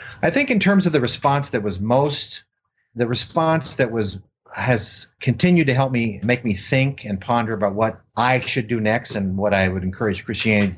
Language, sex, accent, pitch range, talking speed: English, male, American, 105-145 Hz, 200 wpm